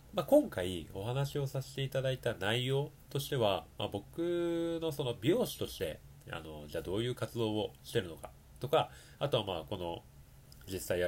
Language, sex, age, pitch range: Japanese, male, 30-49, 90-130 Hz